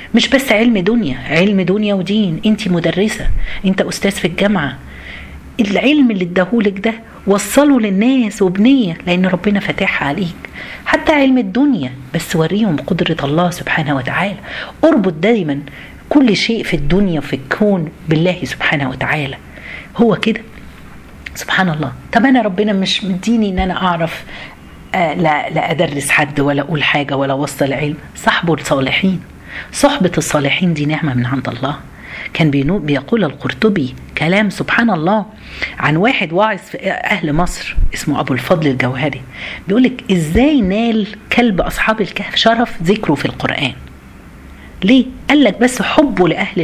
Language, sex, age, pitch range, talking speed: Arabic, female, 40-59, 155-230 Hz, 135 wpm